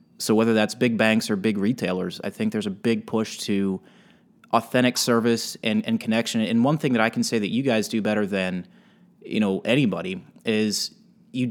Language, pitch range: English, 110-165 Hz